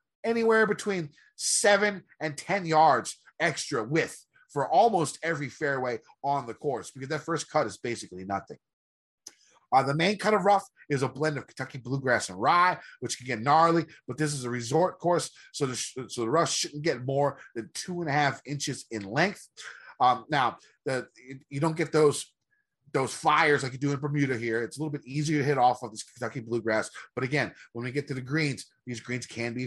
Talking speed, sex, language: 205 wpm, male, English